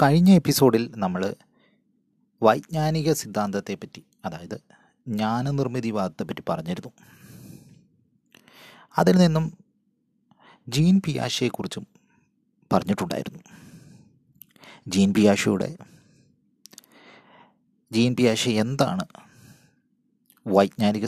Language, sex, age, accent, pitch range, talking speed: Malayalam, male, 30-49, native, 105-160 Hz, 55 wpm